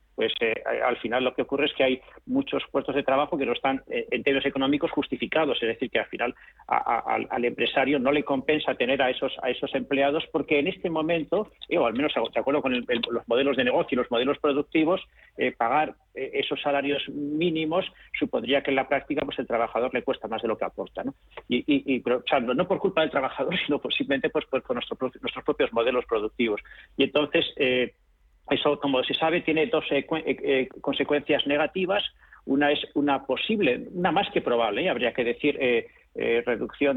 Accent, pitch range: Spanish, 130-170 Hz